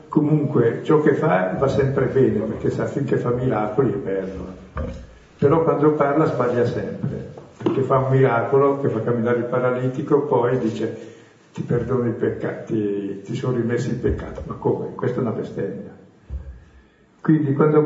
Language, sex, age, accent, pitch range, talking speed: Italian, male, 50-69, native, 110-140 Hz, 160 wpm